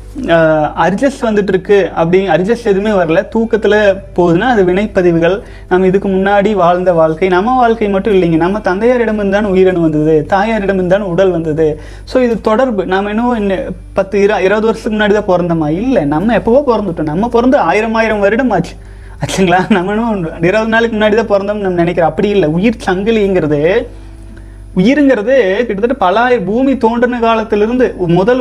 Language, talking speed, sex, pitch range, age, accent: Tamil, 140 wpm, male, 185-230 Hz, 30-49, native